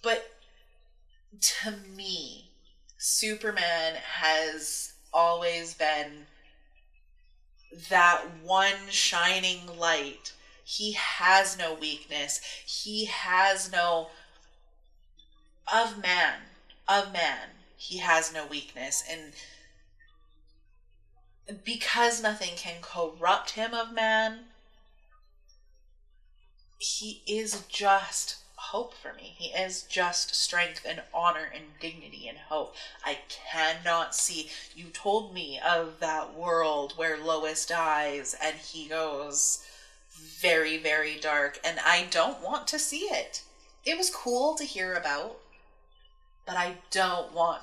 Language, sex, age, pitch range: English, female, 30-49, 155-205 Hz